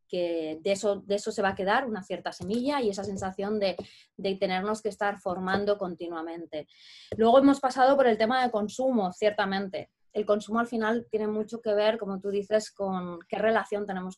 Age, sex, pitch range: 20-39, female, 185-220 Hz